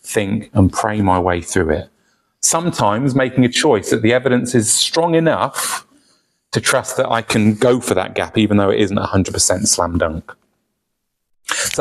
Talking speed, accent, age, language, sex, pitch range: 175 wpm, British, 30-49, English, male, 115-155 Hz